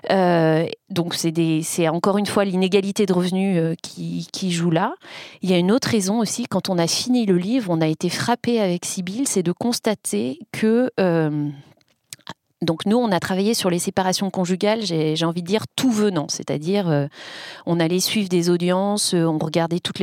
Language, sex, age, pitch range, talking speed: French, female, 40-59, 170-225 Hz, 185 wpm